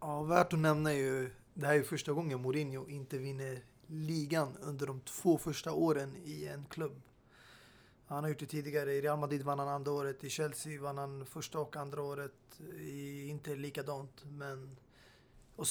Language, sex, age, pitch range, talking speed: Swedish, male, 20-39, 140-155 Hz, 180 wpm